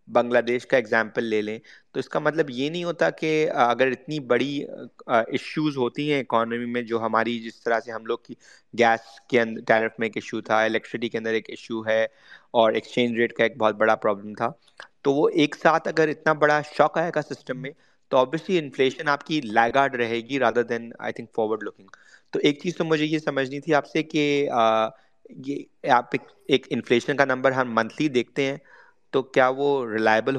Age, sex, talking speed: 30-49, male, 190 wpm